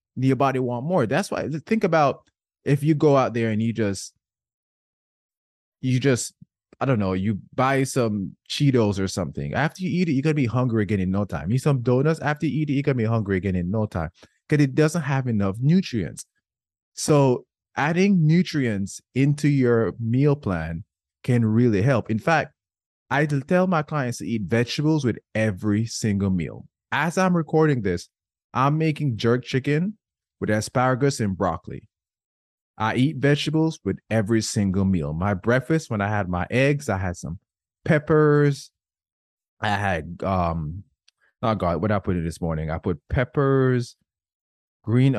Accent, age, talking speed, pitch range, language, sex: American, 20-39, 170 wpm, 100-145 Hz, English, male